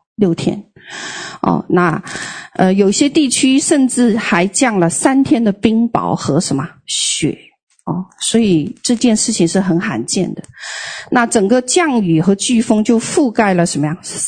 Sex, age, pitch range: female, 40-59, 175-255 Hz